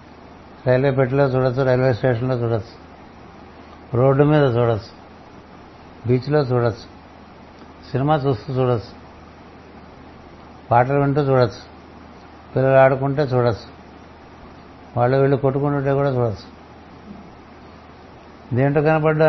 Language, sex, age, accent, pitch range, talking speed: Telugu, male, 60-79, native, 90-140 Hz, 90 wpm